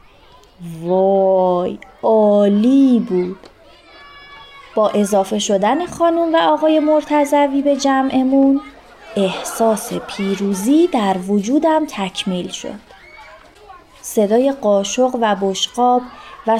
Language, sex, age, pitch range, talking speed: Persian, female, 30-49, 195-270 Hz, 85 wpm